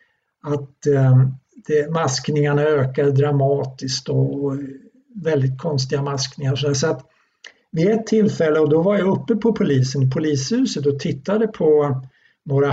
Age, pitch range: 60-79, 135-170 Hz